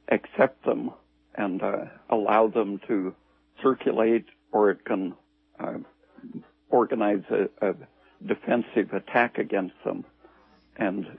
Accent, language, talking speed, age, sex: American, English, 105 wpm, 60-79, male